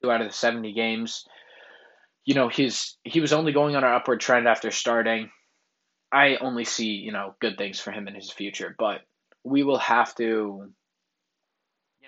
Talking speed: 180 wpm